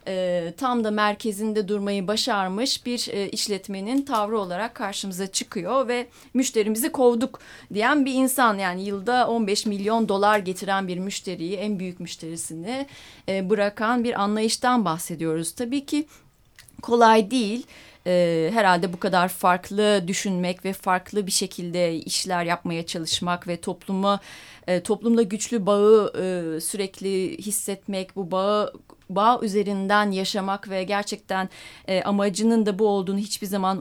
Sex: female